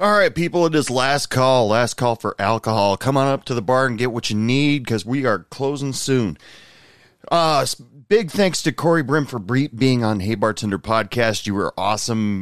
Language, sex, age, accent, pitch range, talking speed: English, male, 30-49, American, 100-130 Hz, 205 wpm